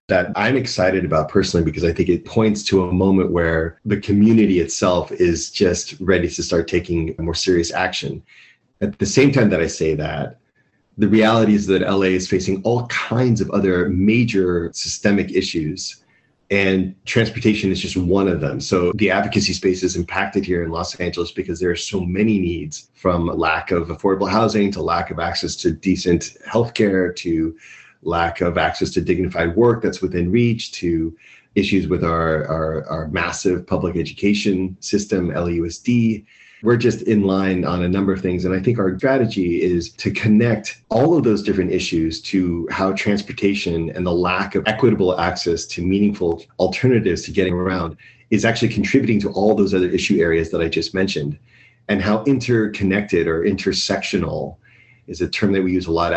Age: 30-49